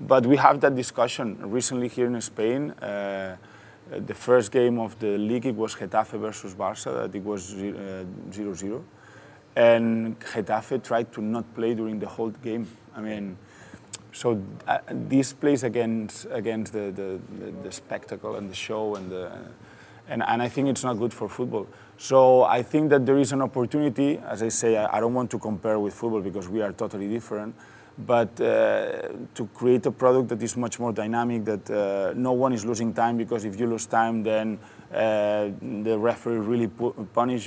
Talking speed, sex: 185 wpm, male